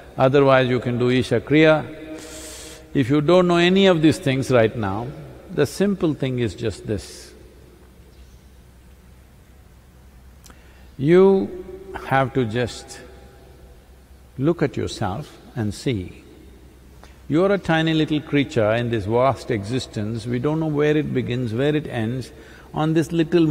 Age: 60-79